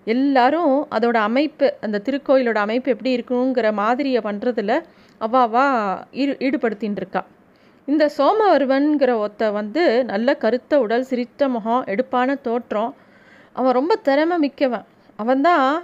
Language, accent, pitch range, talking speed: Tamil, native, 230-275 Hz, 115 wpm